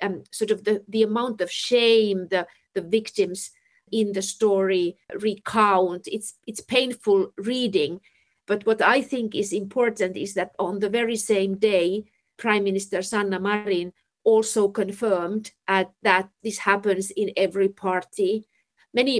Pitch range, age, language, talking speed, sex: 190-225 Hz, 50-69, Finnish, 145 wpm, female